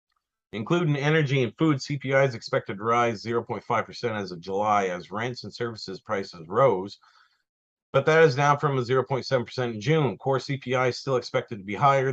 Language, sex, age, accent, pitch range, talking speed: English, male, 40-59, American, 105-135 Hz, 180 wpm